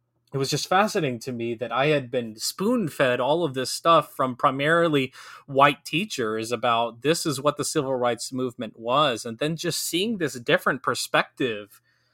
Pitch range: 120-145 Hz